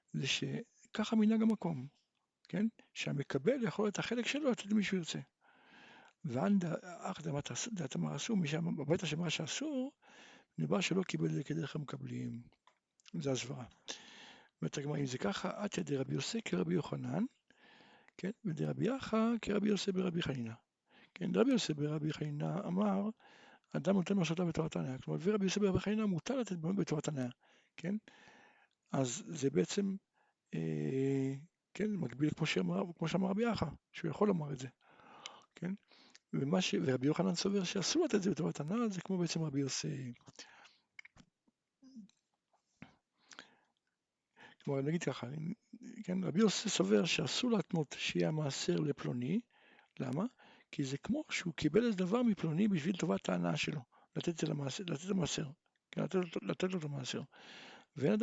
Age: 60-79